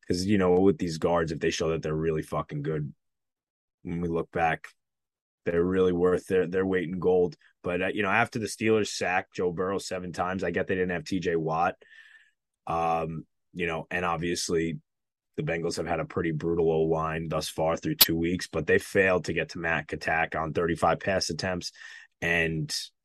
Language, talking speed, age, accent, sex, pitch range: English, 200 wpm, 20-39, American, male, 80-95 Hz